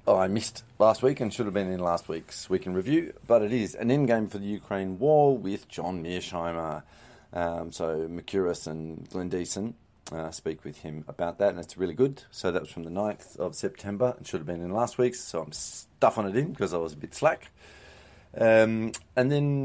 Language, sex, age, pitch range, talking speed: English, male, 30-49, 85-115 Hz, 225 wpm